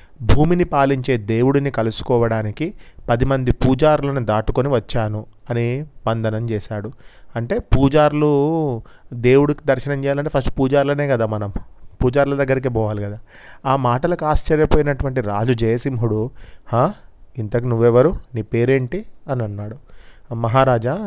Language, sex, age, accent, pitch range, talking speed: Telugu, male, 30-49, native, 115-140 Hz, 105 wpm